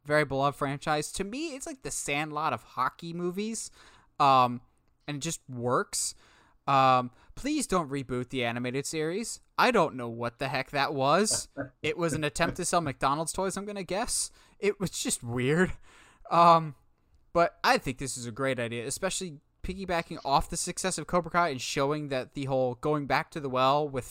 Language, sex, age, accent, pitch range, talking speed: English, male, 20-39, American, 130-170 Hz, 190 wpm